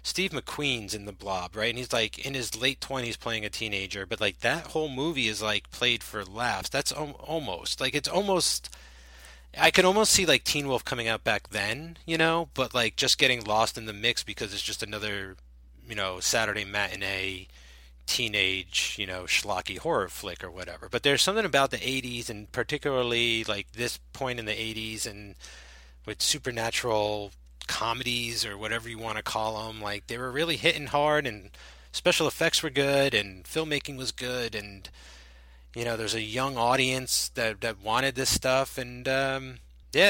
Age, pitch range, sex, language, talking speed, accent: 30-49, 100-130 Hz, male, English, 185 wpm, American